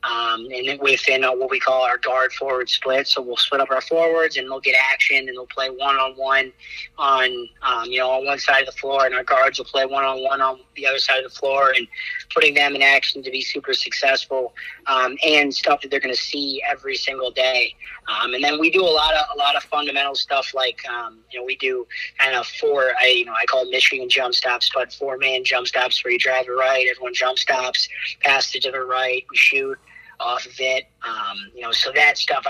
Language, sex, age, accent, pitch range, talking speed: English, male, 30-49, American, 130-150 Hz, 240 wpm